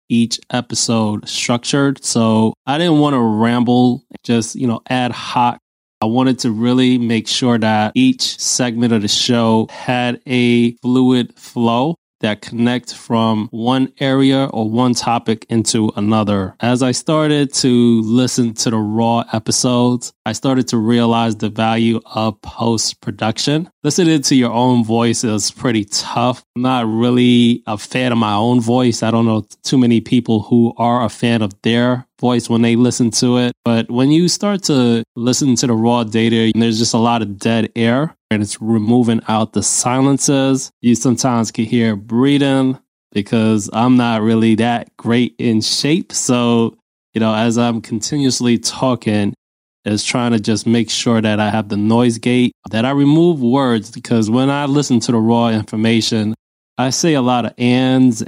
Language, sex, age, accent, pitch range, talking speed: English, male, 20-39, American, 110-125 Hz, 170 wpm